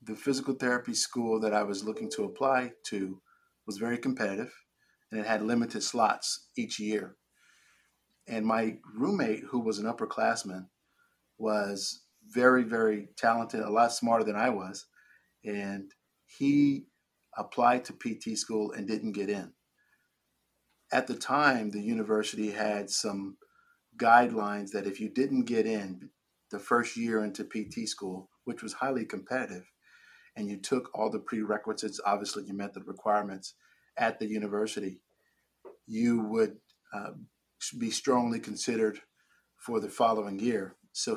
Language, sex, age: English, male, 50-69